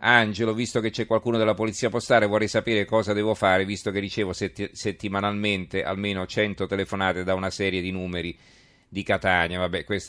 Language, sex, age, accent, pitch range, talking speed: Italian, male, 40-59, native, 95-110 Hz, 170 wpm